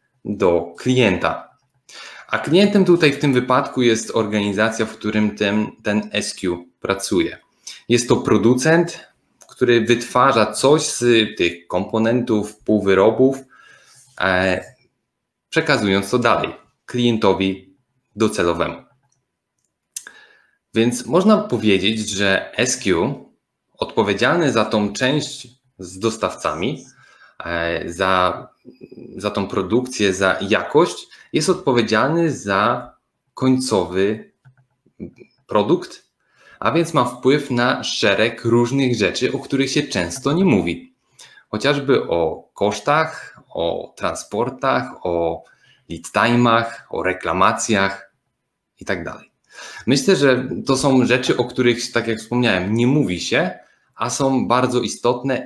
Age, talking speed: 20-39, 105 wpm